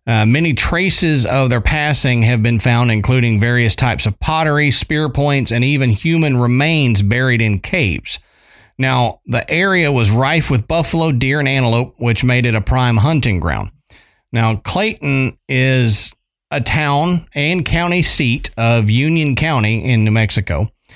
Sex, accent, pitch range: male, American, 115-150 Hz